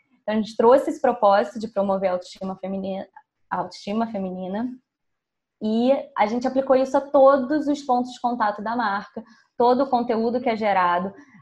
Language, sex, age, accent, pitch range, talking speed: Portuguese, female, 20-39, Brazilian, 195-245 Hz, 170 wpm